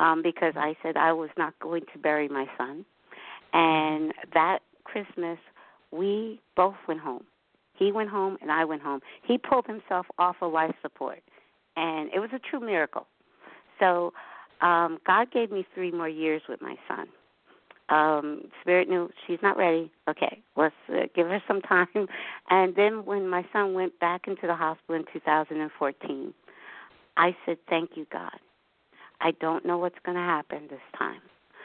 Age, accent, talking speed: 50-69, American, 170 wpm